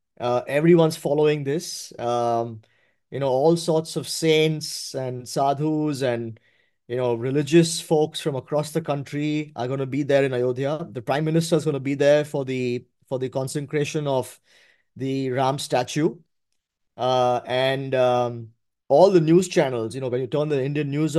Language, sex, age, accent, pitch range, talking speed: English, male, 20-39, Indian, 130-155 Hz, 175 wpm